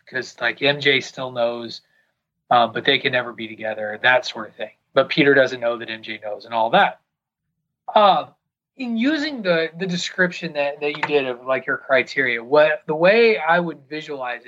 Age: 30-49